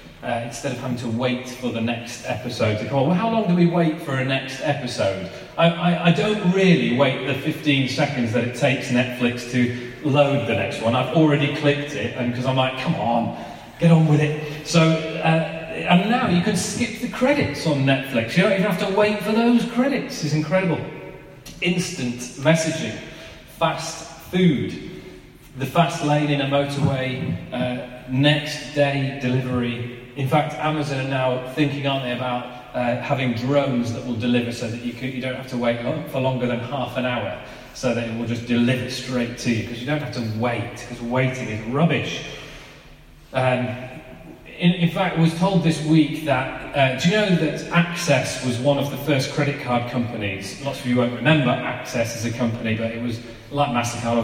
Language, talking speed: English, 195 wpm